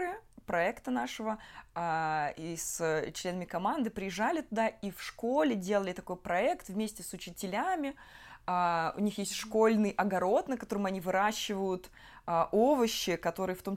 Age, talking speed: 20-39, 130 wpm